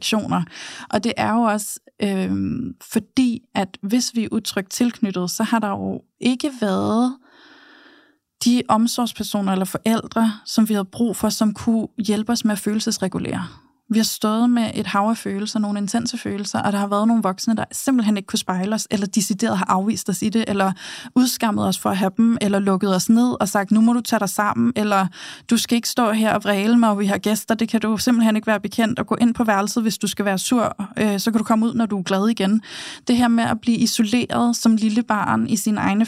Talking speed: 225 wpm